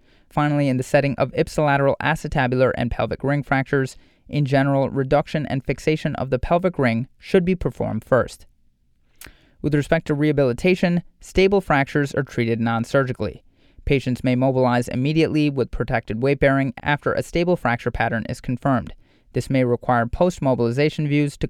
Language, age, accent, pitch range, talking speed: English, 30-49, American, 125-150 Hz, 150 wpm